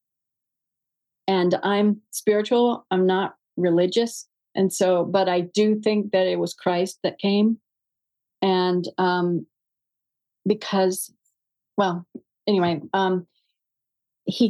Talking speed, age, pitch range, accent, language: 105 wpm, 40-59, 170-205 Hz, American, English